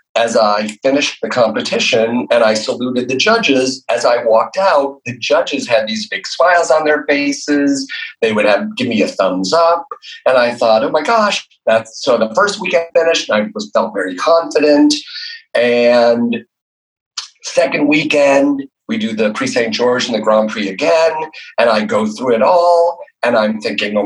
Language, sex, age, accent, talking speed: English, male, 40-59, American, 180 wpm